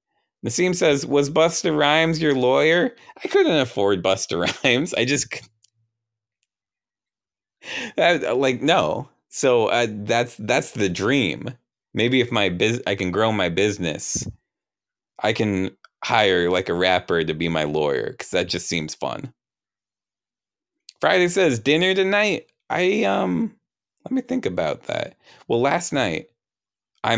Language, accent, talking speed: English, American, 135 wpm